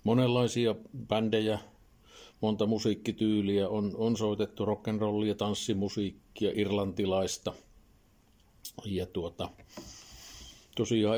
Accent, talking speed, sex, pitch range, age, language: native, 75 wpm, male, 105-120 Hz, 50-69, Finnish